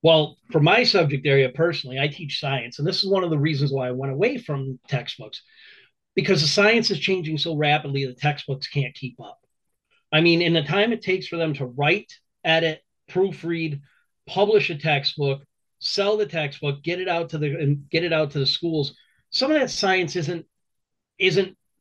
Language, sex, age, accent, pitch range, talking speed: English, male, 30-49, American, 140-170 Hz, 195 wpm